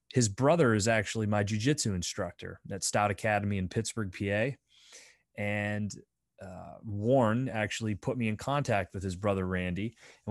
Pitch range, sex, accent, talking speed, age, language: 100-120 Hz, male, American, 150 wpm, 30-49, English